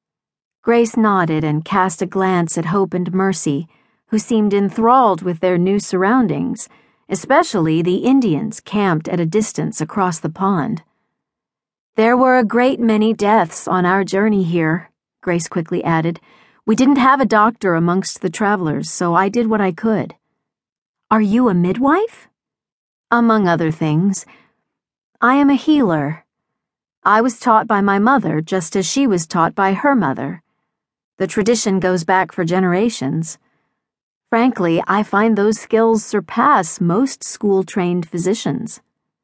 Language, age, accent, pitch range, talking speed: English, 50-69, American, 175-225 Hz, 145 wpm